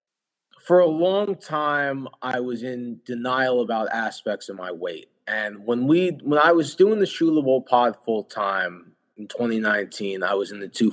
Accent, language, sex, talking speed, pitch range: American, English, male, 180 wpm, 105-145 Hz